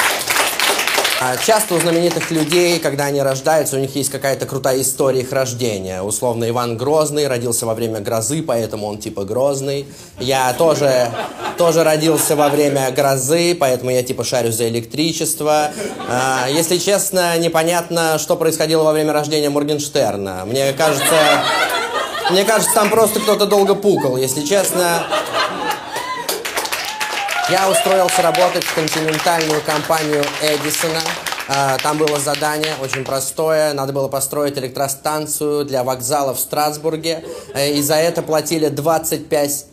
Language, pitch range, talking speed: Russian, 135-165 Hz, 125 wpm